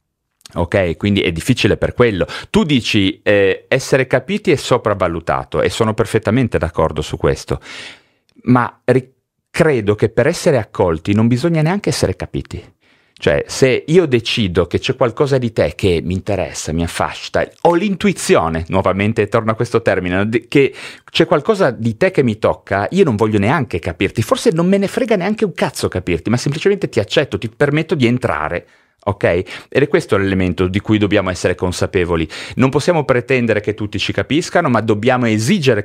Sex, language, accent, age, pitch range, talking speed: male, Italian, native, 40-59, 100-150 Hz, 170 wpm